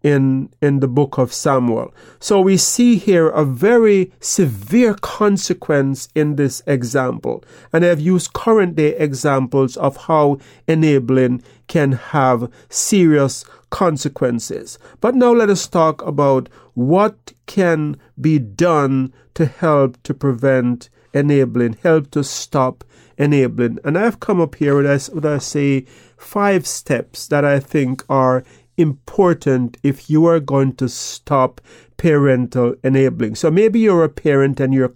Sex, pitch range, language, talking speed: male, 135-165 Hz, English, 135 wpm